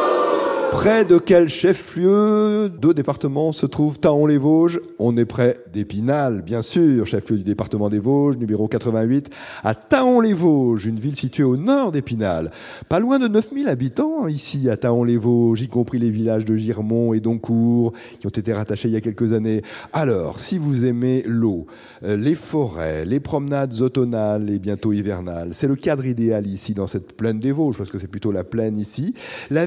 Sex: male